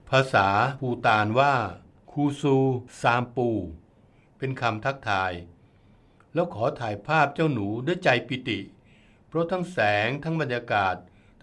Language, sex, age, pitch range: Thai, male, 60-79, 105-135 Hz